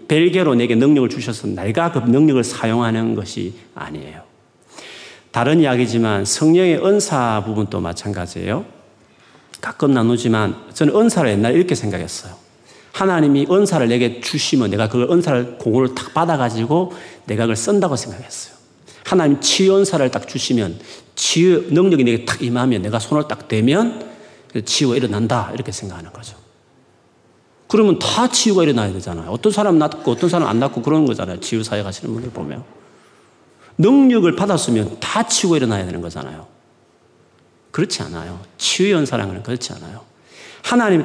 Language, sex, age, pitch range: Korean, male, 40-59, 110-170 Hz